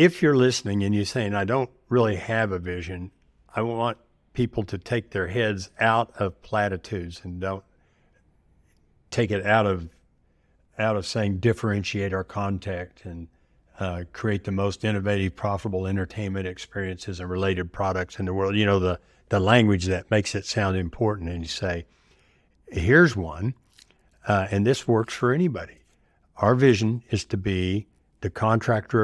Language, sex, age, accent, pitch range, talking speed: English, male, 60-79, American, 90-115 Hz, 160 wpm